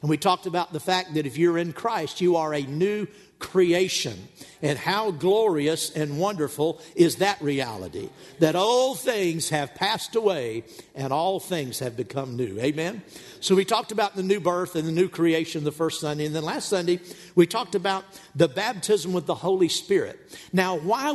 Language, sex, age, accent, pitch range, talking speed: English, male, 50-69, American, 155-210 Hz, 185 wpm